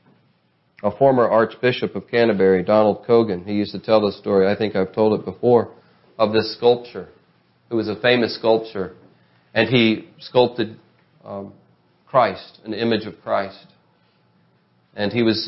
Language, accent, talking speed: English, American, 150 wpm